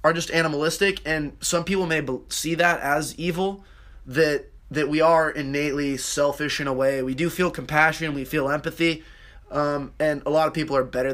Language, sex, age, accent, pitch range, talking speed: English, male, 20-39, American, 135-160 Hz, 190 wpm